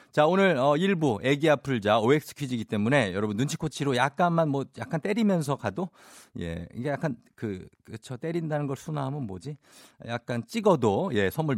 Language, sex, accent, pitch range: Korean, male, native, 110-150 Hz